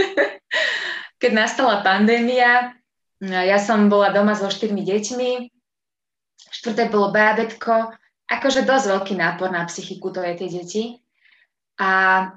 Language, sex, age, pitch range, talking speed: Slovak, female, 20-39, 180-225 Hz, 115 wpm